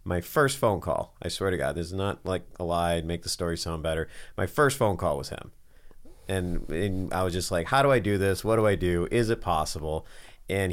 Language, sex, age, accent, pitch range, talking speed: English, male, 30-49, American, 80-95 Hz, 240 wpm